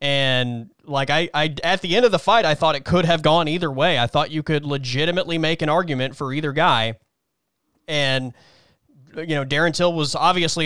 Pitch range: 135-170 Hz